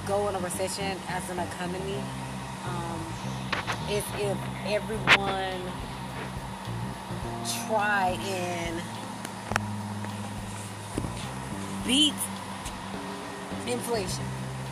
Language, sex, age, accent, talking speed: English, female, 20-39, American, 55 wpm